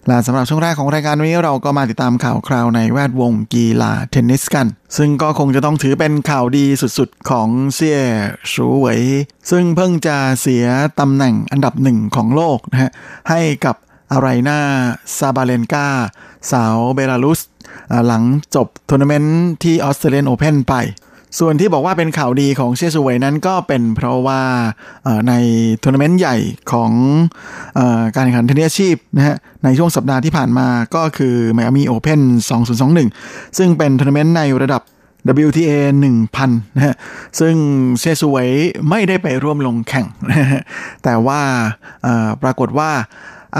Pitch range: 125-150 Hz